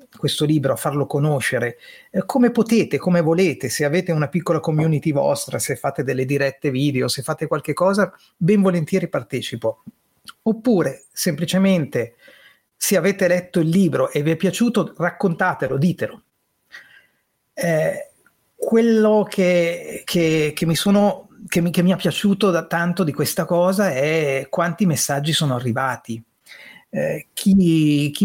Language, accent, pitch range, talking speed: Italian, native, 145-190 Hz, 140 wpm